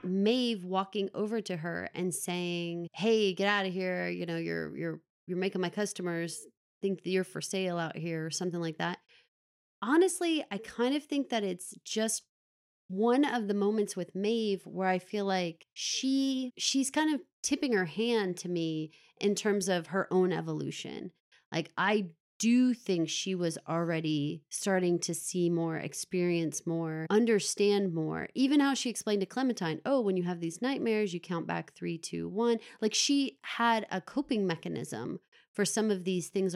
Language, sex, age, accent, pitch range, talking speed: English, female, 30-49, American, 170-220 Hz, 180 wpm